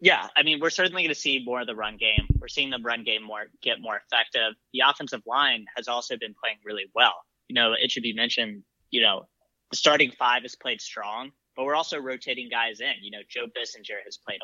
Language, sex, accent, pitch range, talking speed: English, male, American, 115-145 Hz, 235 wpm